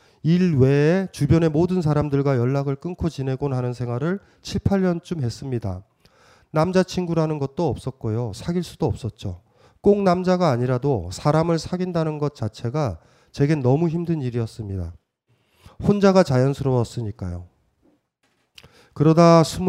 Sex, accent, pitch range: male, native, 115-155 Hz